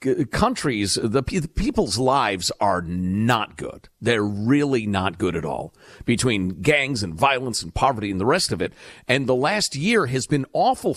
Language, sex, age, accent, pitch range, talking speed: English, male, 50-69, American, 105-160 Hz, 175 wpm